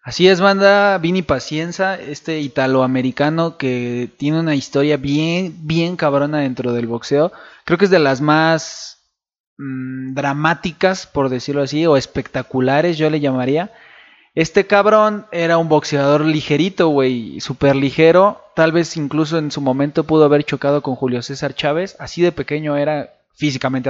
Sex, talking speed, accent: male, 150 wpm, Mexican